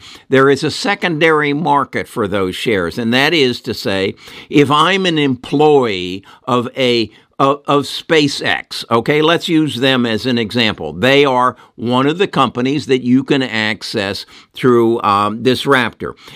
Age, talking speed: 60-79, 160 wpm